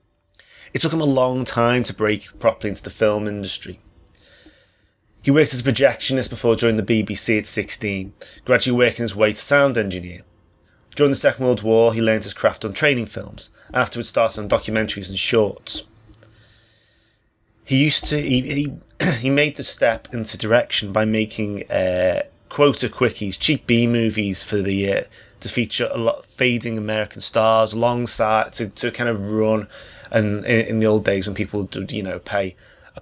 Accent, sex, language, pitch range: British, male, English, 100-115 Hz